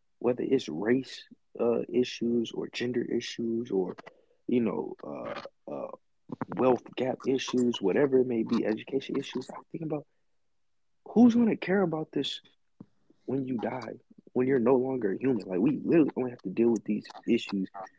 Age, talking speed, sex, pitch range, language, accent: 20-39, 165 wpm, male, 100-125 Hz, English, American